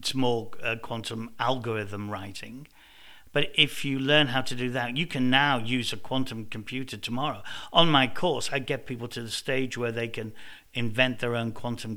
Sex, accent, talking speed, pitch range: male, British, 190 wpm, 120-140 Hz